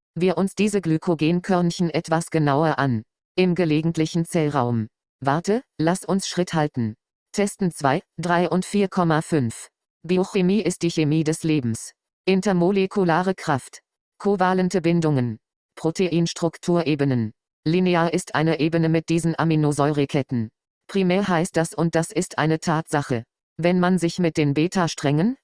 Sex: female